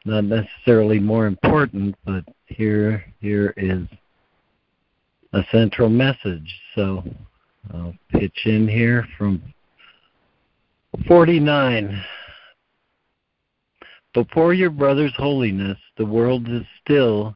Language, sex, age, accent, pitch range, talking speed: English, male, 60-79, American, 100-125 Hz, 90 wpm